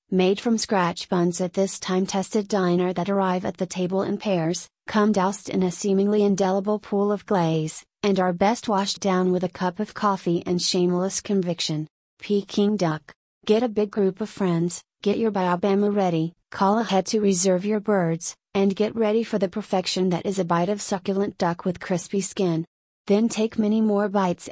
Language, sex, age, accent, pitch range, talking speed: English, female, 30-49, American, 180-205 Hz, 185 wpm